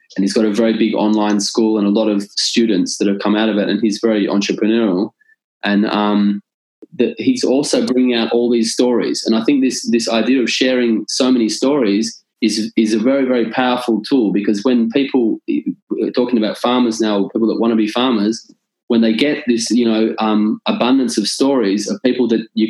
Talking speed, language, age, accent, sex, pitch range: 210 wpm, English, 20-39, Australian, male, 105-120 Hz